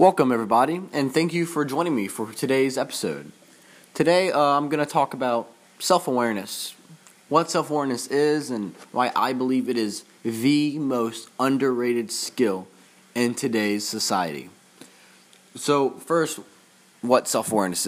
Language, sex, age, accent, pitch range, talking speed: English, male, 20-39, American, 115-145 Hz, 130 wpm